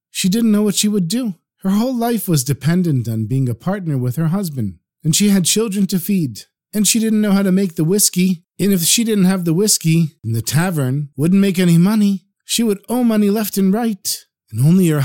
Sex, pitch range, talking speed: male, 135-190 Hz, 230 wpm